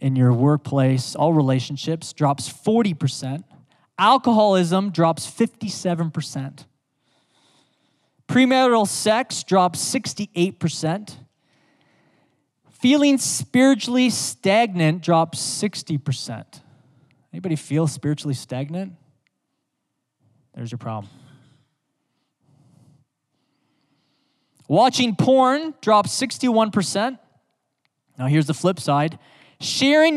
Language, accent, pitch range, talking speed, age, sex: English, American, 140-215 Hz, 70 wpm, 20-39, male